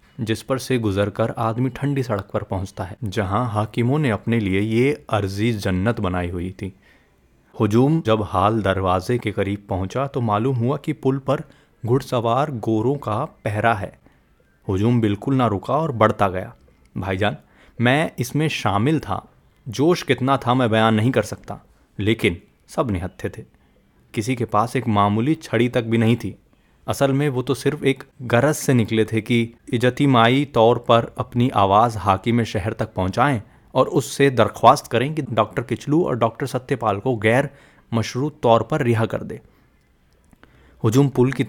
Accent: native